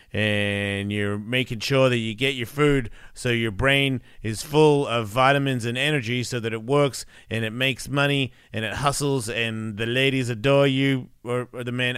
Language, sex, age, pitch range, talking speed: English, male, 30-49, 125-150 Hz, 190 wpm